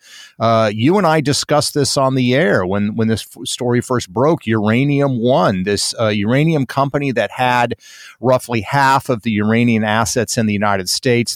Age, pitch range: 50-69, 110-140 Hz